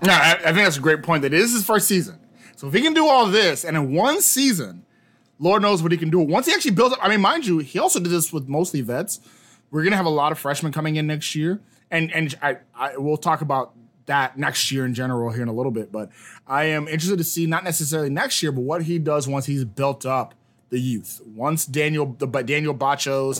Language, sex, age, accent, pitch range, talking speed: English, male, 20-39, American, 125-175 Hz, 255 wpm